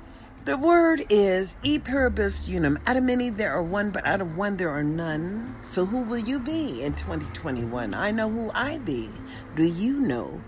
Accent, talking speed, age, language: American, 190 wpm, 50-69, English